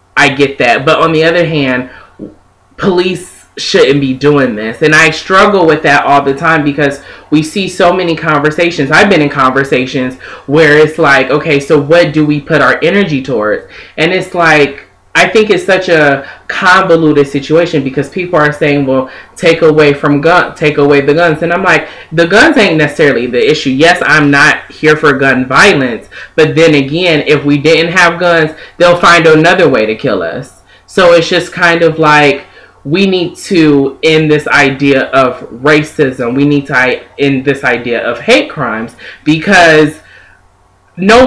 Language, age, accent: English, 20-39, American